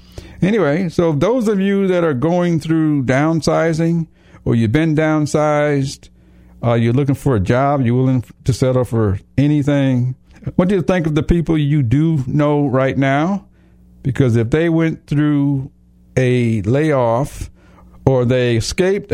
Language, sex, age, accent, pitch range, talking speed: English, male, 60-79, American, 90-140 Hz, 150 wpm